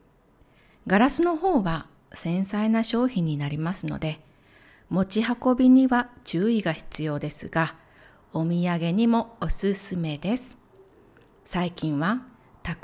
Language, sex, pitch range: Japanese, female, 170-245 Hz